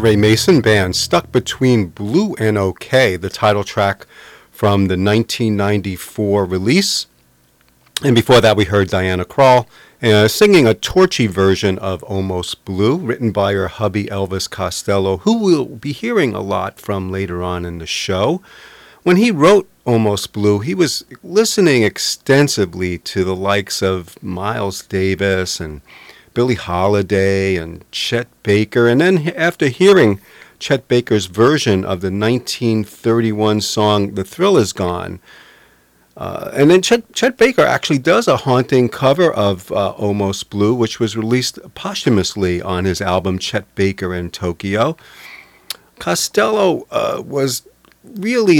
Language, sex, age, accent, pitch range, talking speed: English, male, 40-59, American, 95-130 Hz, 140 wpm